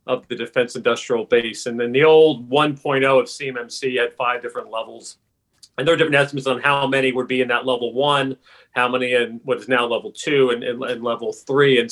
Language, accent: English, American